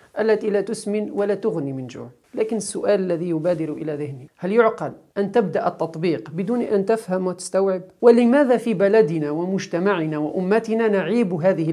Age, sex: 50-69, male